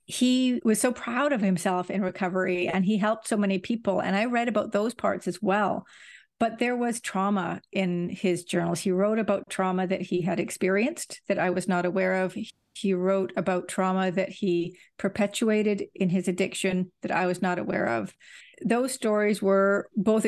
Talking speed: 185 wpm